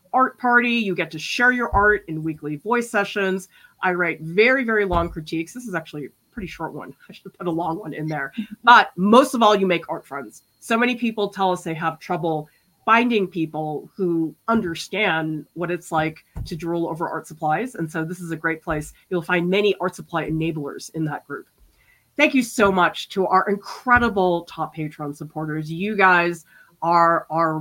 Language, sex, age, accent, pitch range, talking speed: English, female, 30-49, American, 160-215 Hz, 200 wpm